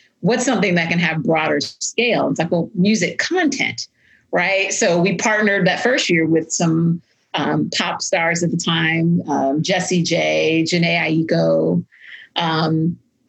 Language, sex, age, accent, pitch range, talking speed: English, female, 40-59, American, 170-215 Hz, 150 wpm